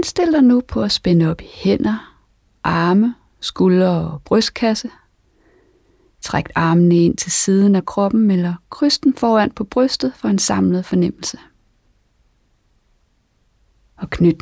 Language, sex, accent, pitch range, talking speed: Danish, female, native, 170-220 Hz, 130 wpm